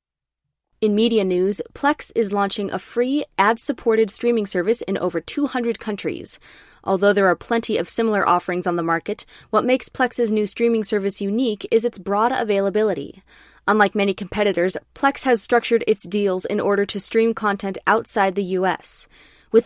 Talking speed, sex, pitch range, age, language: 160 wpm, female, 190-230 Hz, 20-39, English